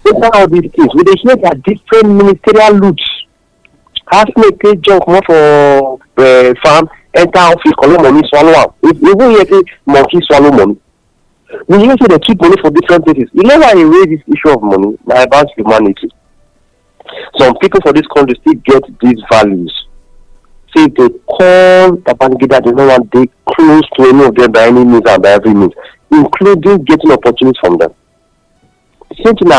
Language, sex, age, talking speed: English, male, 50-69, 185 wpm